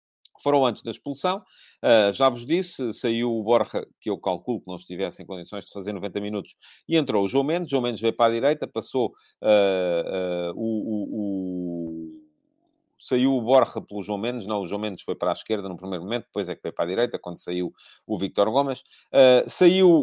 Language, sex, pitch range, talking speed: English, male, 105-145 Hz, 200 wpm